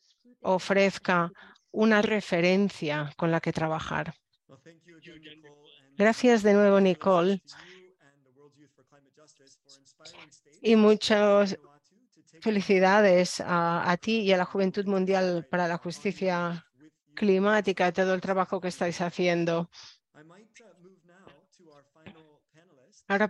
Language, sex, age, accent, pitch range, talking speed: English, female, 40-59, Spanish, 170-205 Hz, 85 wpm